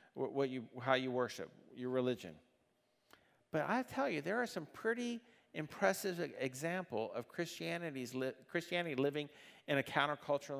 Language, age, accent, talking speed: English, 50-69, American, 140 wpm